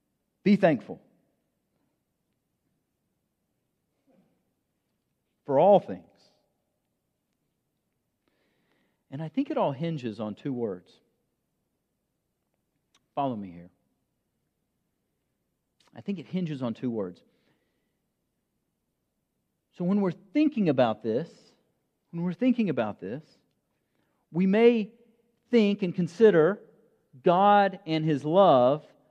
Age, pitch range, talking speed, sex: 50-69, 175-230 Hz, 90 wpm, male